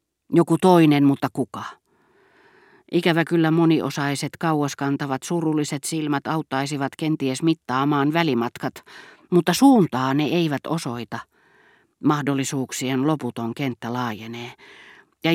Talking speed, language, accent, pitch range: 95 wpm, Finnish, native, 130-170 Hz